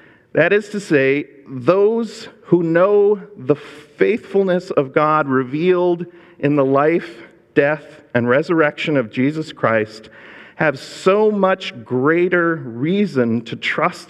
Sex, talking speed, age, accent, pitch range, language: male, 120 wpm, 50-69, American, 130-175 Hz, English